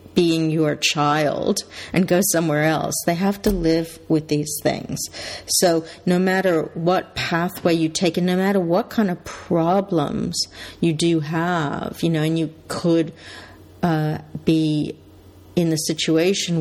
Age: 50-69